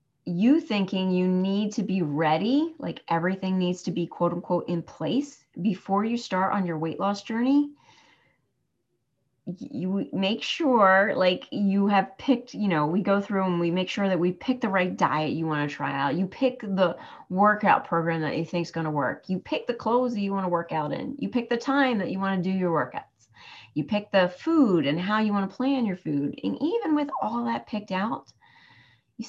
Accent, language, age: American, English, 30-49